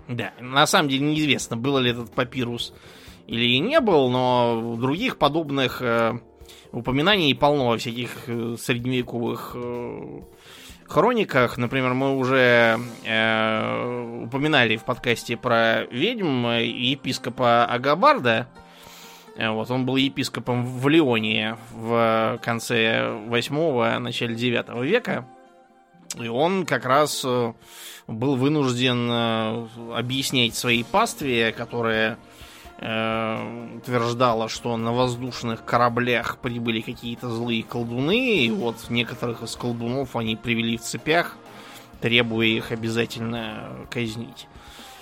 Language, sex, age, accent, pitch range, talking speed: Russian, male, 20-39, native, 115-130 Hz, 105 wpm